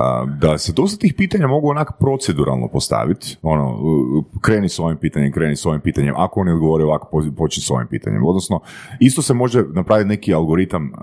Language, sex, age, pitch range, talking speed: Croatian, male, 30-49, 75-125 Hz, 180 wpm